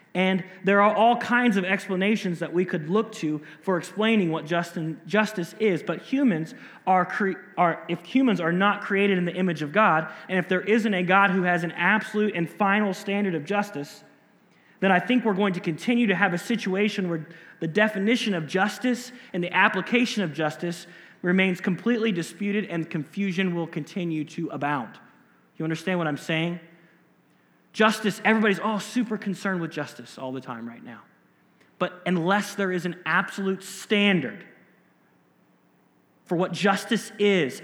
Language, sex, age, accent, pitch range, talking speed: English, male, 30-49, American, 165-205 Hz, 170 wpm